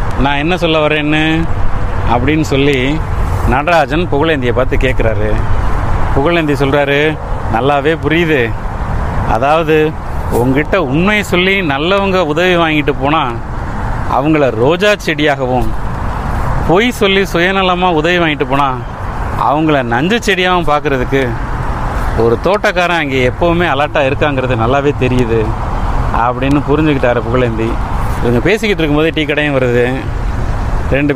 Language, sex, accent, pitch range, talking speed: Tamil, male, native, 110-155 Hz, 105 wpm